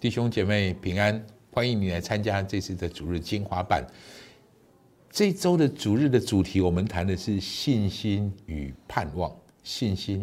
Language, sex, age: Chinese, male, 50-69